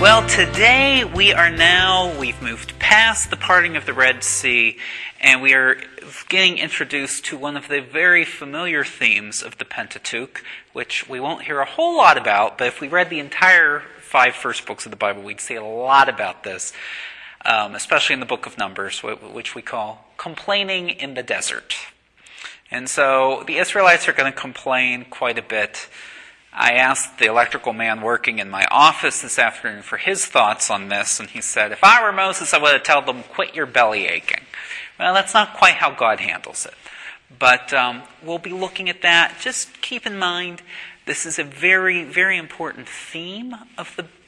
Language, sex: English, male